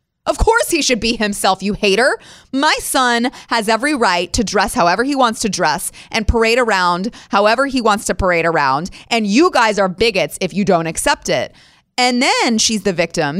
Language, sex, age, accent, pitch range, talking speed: English, female, 30-49, American, 175-250 Hz, 195 wpm